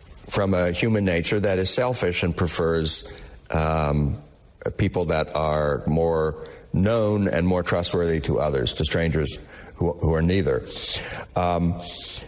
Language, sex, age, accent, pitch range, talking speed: English, male, 60-79, American, 85-100 Hz, 130 wpm